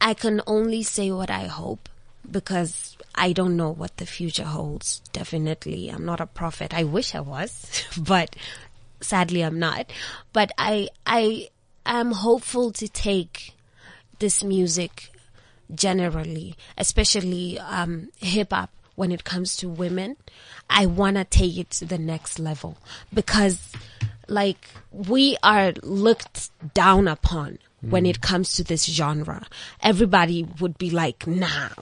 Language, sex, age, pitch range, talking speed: English, female, 20-39, 170-210 Hz, 140 wpm